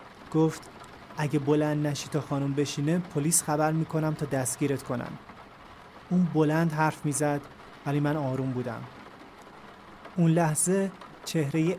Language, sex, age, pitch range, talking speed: Persian, male, 30-49, 140-165 Hz, 120 wpm